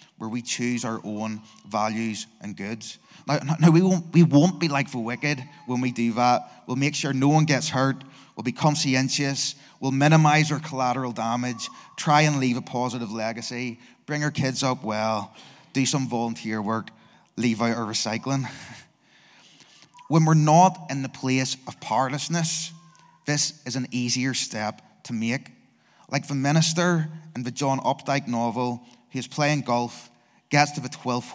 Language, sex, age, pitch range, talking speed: English, male, 20-39, 115-150 Hz, 165 wpm